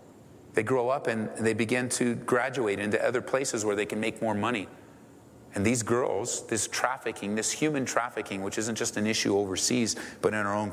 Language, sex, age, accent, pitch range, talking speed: English, male, 30-49, American, 95-110 Hz, 195 wpm